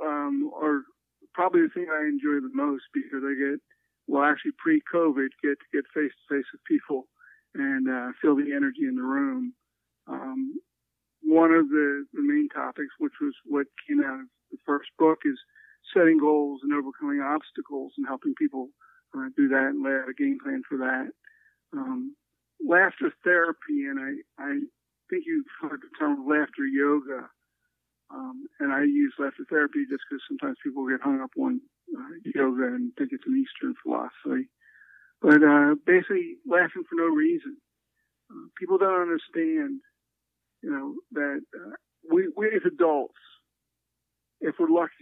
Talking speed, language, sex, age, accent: 165 wpm, English, male, 50-69, American